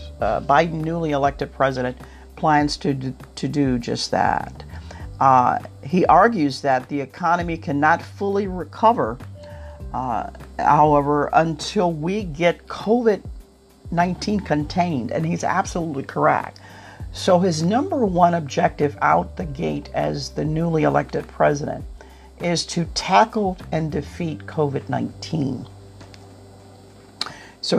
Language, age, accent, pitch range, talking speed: English, 50-69, American, 105-160 Hz, 110 wpm